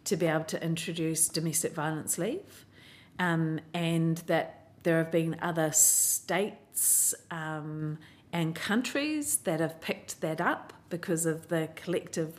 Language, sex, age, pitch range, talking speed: English, female, 40-59, 160-175 Hz, 135 wpm